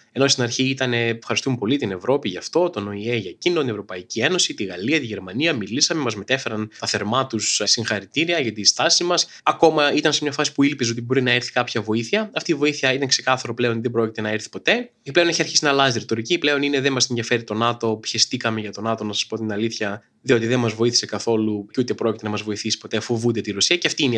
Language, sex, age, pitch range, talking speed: Greek, male, 20-39, 110-135 Hz, 245 wpm